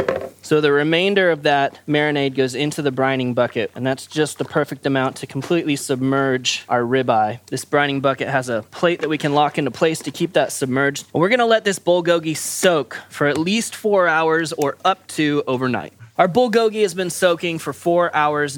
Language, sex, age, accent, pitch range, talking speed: English, male, 20-39, American, 145-175 Hz, 195 wpm